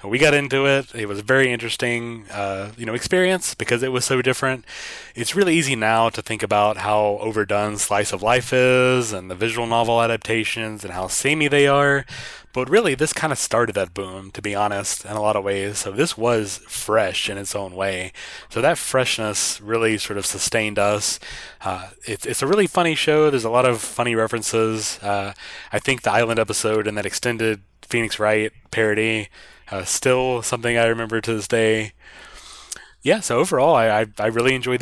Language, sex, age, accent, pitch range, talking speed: English, male, 20-39, American, 105-135 Hz, 195 wpm